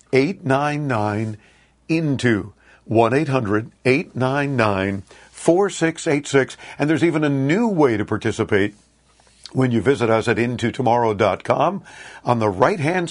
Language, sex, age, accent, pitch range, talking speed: English, male, 50-69, American, 110-150 Hz, 90 wpm